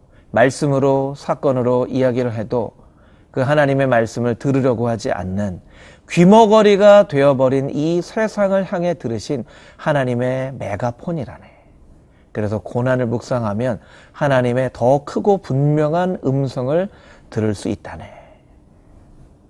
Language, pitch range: Korean, 110-160 Hz